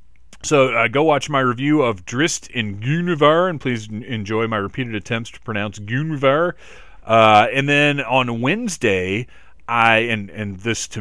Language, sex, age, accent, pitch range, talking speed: English, male, 30-49, American, 100-135 Hz, 165 wpm